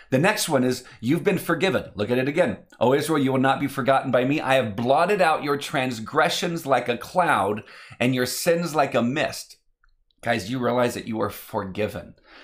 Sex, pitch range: male, 125-165 Hz